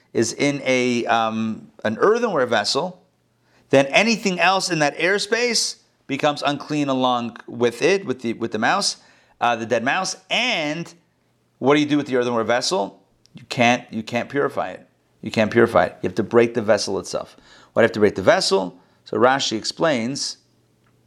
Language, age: English, 40-59